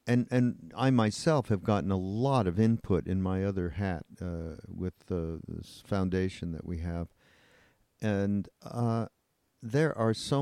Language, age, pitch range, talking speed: English, 50-69, 90-115 Hz, 155 wpm